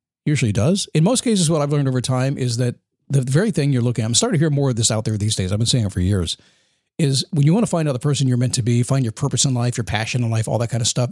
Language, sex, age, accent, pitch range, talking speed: English, male, 50-69, American, 120-165 Hz, 335 wpm